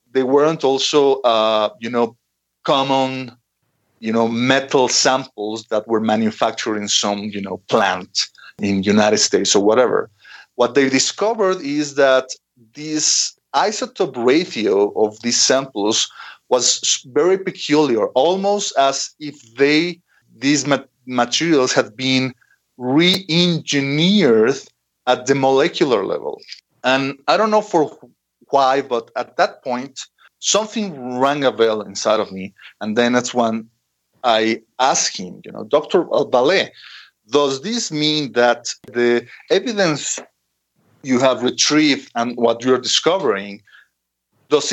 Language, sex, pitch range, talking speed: English, male, 115-150 Hz, 125 wpm